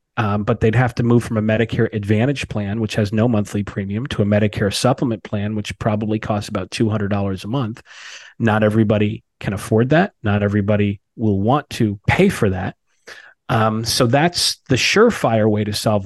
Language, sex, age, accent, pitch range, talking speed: English, male, 40-59, American, 105-120 Hz, 185 wpm